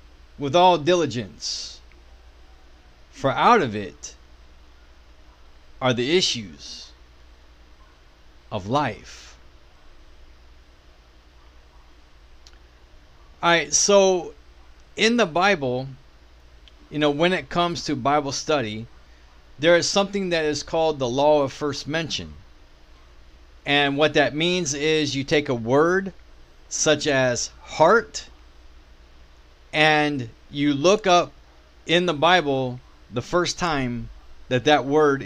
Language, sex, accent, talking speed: English, male, American, 105 wpm